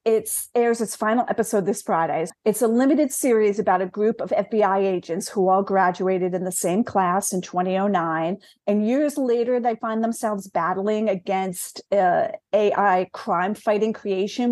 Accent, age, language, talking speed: American, 40-59, English, 155 wpm